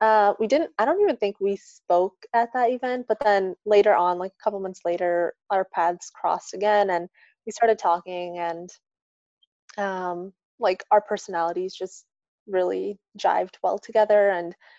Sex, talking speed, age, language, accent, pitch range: female, 160 wpm, 20-39, English, American, 185-230 Hz